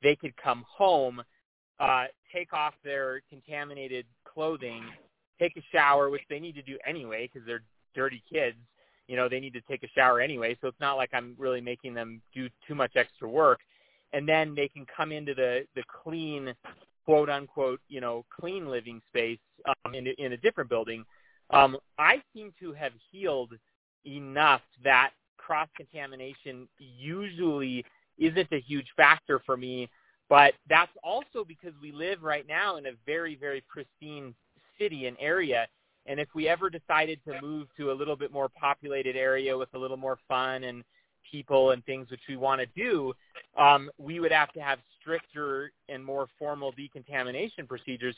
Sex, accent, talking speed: male, American, 170 wpm